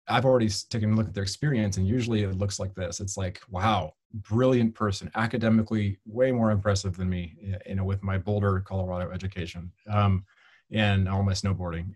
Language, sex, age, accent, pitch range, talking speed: English, male, 30-49, American, 100-115 Hz, 185 wpm